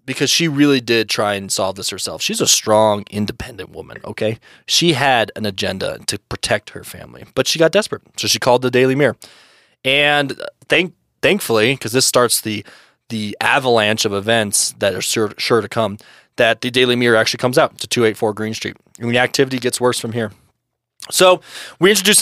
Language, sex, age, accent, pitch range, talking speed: English, male, 20-39, American, 115-145 Hz, 190 wpm